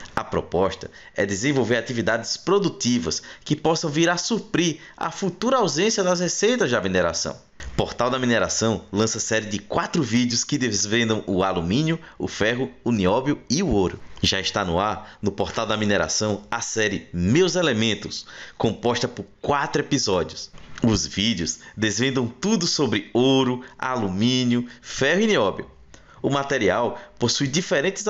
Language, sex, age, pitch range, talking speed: Portuguese, male, 20-39, 110-160 Hz, 145 wpm